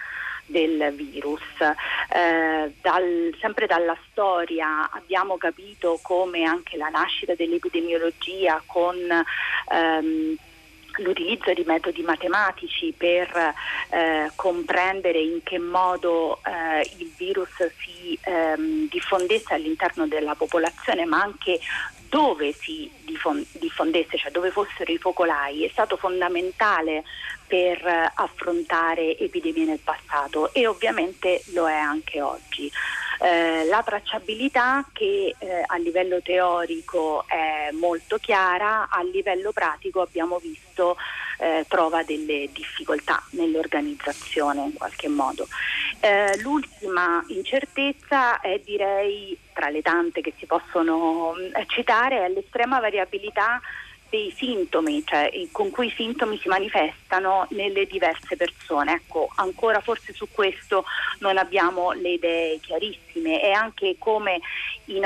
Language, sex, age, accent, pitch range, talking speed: Italian, female, 40-59, native, 165-220 Hz, 115 wpm